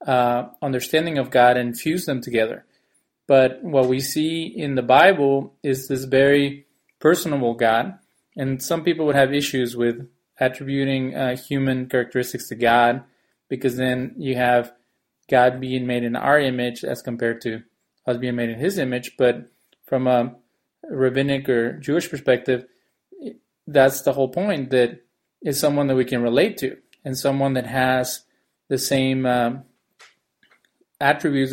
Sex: male